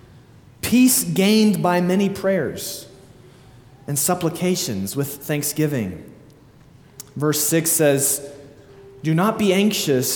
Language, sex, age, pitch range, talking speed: English, male, 20-39, 130-180 Hz, 95 wpm